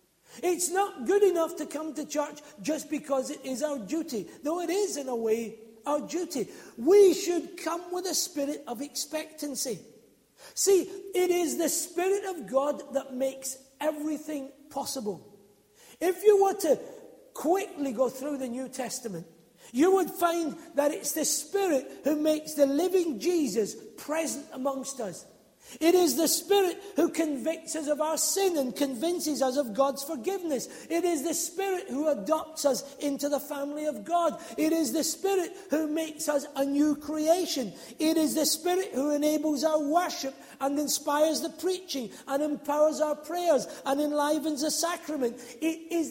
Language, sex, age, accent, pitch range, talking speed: English, male, 40-59, British, 275-335 Hz, 165 wpm